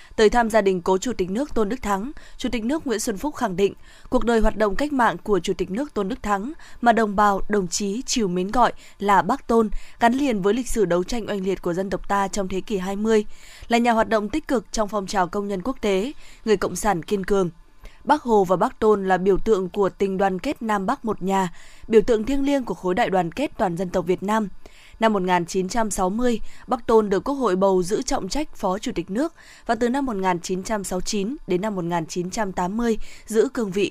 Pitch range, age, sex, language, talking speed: 195-235 Hz, 20-39, female, Vietnamese, 235 wpm